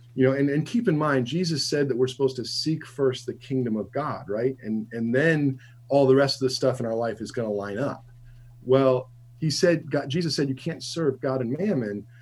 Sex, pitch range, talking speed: male, 120-140 Hz, 240 wpm